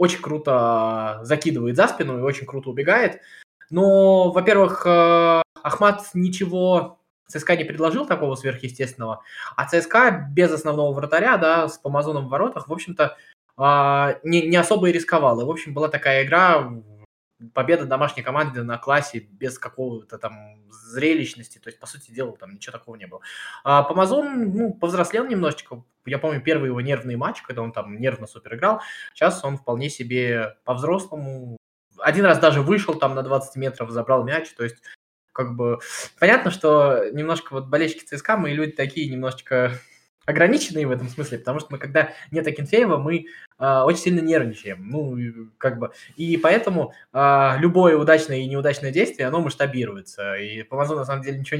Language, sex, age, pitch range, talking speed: Russian, male, 20-39, 125-165 Hz, 165 wpm